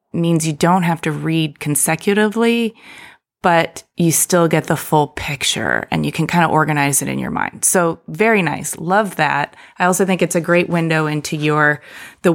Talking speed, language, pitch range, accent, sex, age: 190 wpm, English, 150-180 Hz, American, female, 20-39